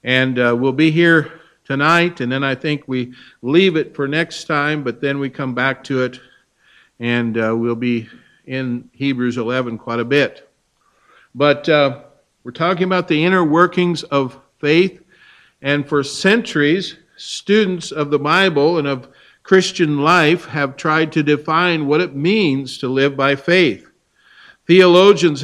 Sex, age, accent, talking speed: male, 60-79, American, 155 wpm